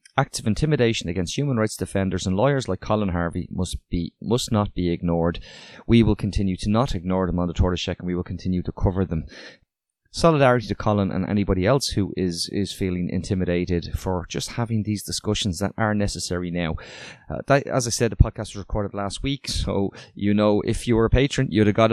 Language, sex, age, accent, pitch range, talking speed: English, male, 20-39, Irish, 100-120 Hz, 215 wpm